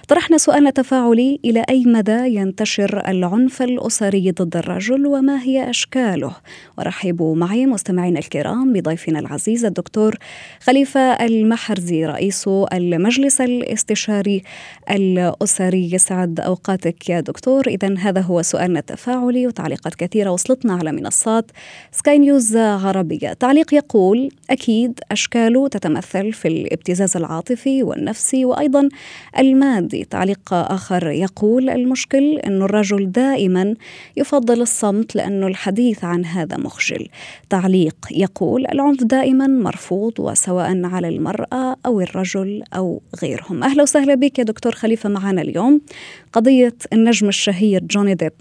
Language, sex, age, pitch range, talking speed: Arabic, female, 20-39, 190-255 Hz, 115 wpm